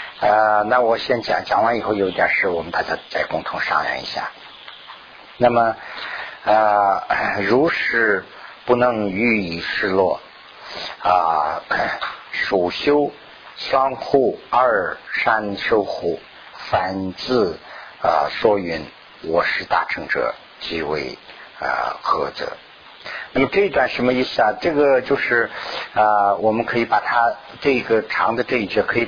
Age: 50-69